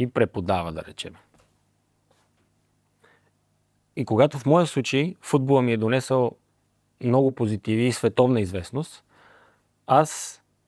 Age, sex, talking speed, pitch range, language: 30-49, male, 105 wpm, 110-135 Hz, Bulgarian